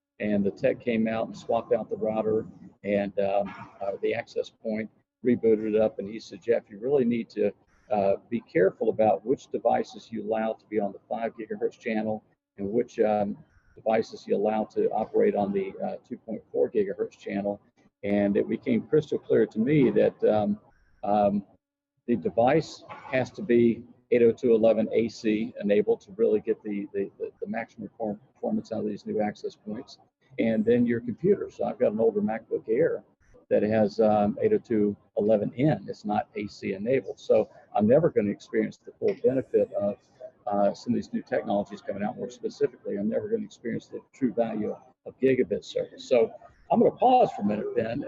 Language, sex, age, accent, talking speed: English, male, 50-69, American, 185 wpm